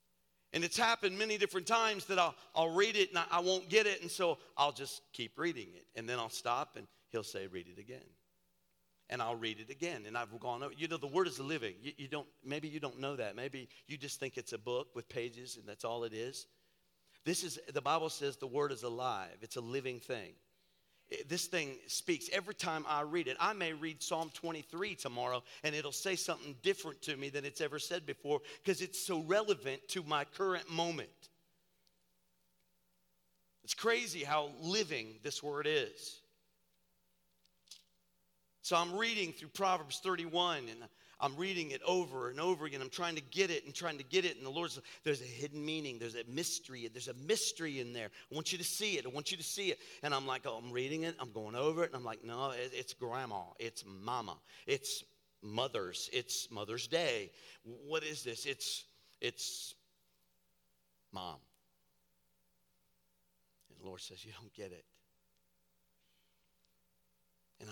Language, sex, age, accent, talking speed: English, male, 50-69, American, 190 wpm